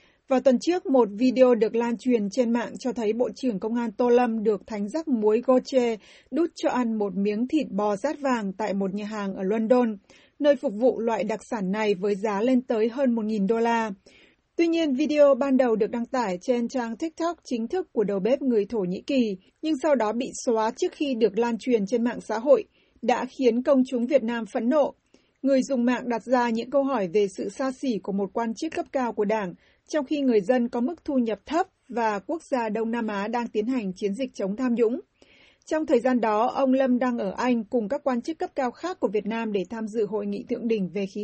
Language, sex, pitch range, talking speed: Vietnamese, female, 220-265 Hz, 240 wpm